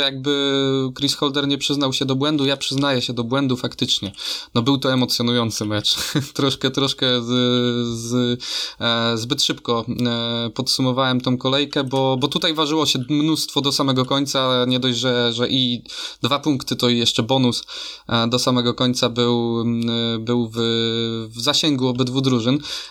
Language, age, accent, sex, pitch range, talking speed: Polish, 20-39, native, male, 120-150 Hz, 145 wpm